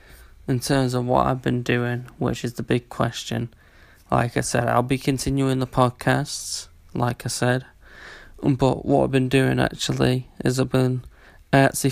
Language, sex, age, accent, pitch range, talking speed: English, male, 10-29, British, 90-130 Hz, 170 wpm